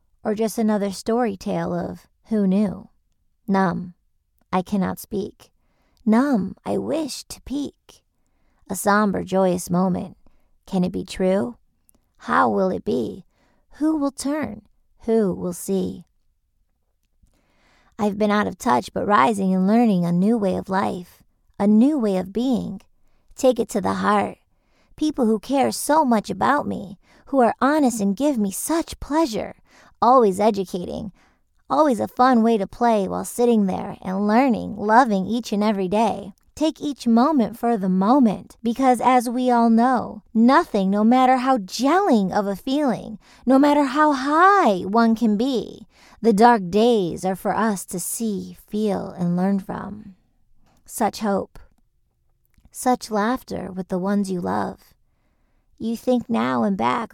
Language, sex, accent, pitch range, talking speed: English, female, American, 195-245 Hz, 150 wpm